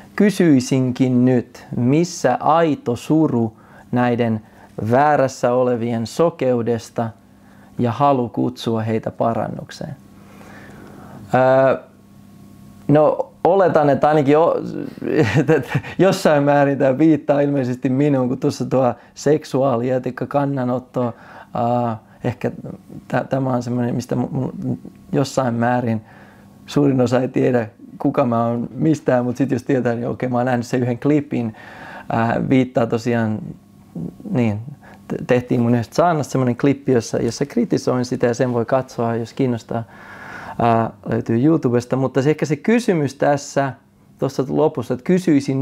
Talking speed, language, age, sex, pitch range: 120 wpm, Finnish, 30-49, male, 120-140 Hz